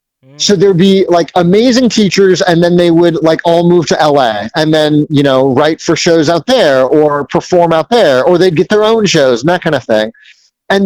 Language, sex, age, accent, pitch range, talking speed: English, male, 30-49, American, 150-185 Hz, 220 wpm